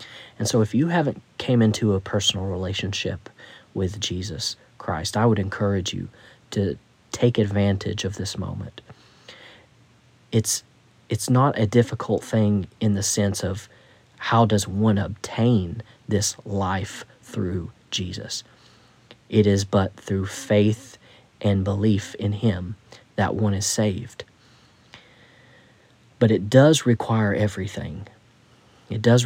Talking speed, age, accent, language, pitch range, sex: 125 wpm, 40-59, American, English, 100-120 Hz, male